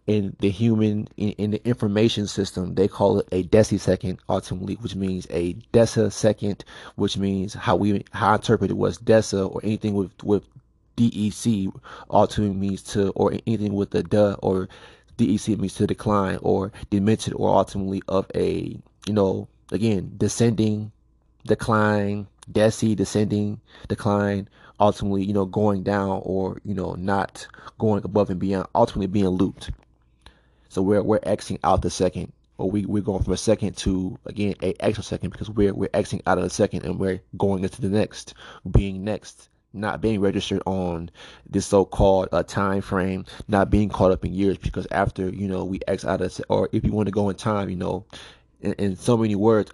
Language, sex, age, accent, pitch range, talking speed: English, male, 20-39, American, 95-105 Hz, 185 wpm